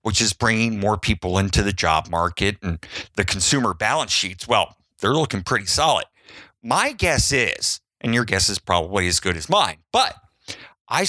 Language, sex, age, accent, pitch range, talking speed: English, male, 50-69, American, 90-125 Hz, 180 wpm